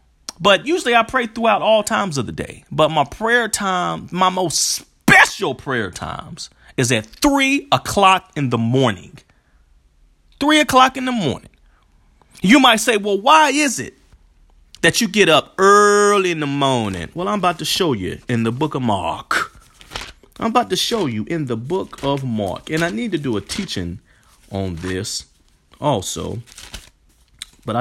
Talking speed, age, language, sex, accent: 170 wpm, 40-59, English, male, American